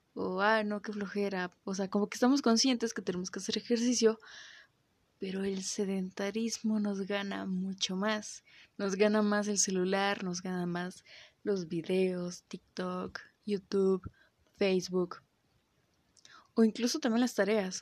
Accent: Mexican